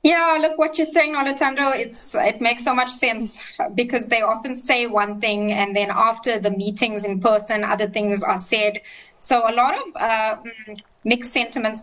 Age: 20-39